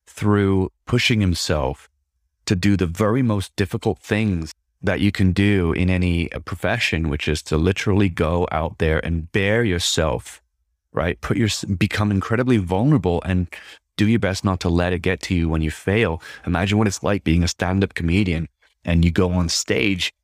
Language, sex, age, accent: English, male, 30-49, American